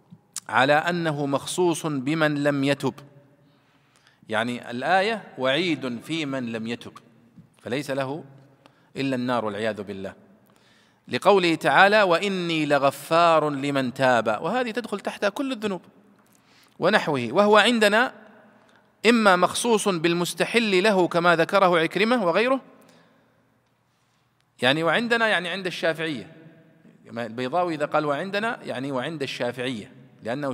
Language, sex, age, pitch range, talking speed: Arabic, male, 40-59, 135-195 Hz, 105 wpm